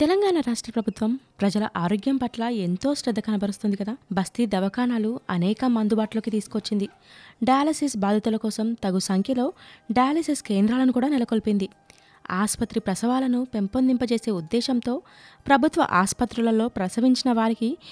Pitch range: 200-255 Hz